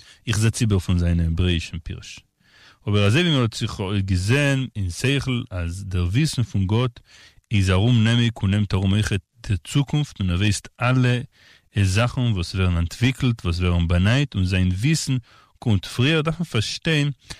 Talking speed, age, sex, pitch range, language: 125 wpm, 40-59, male, 95-115 Hz, Hebrew